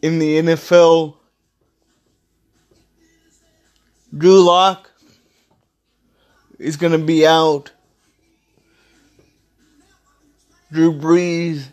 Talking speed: 60 wpm